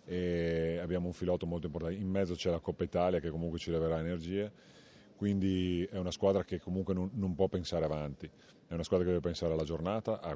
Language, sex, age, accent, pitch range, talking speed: Italian, male, 30-49, native, 80-90 Hz, 215 wpm